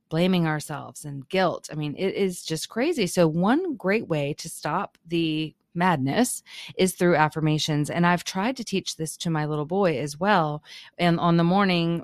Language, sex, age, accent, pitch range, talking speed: English, female, 30-49, American, 160-200 Hz, 185 wpm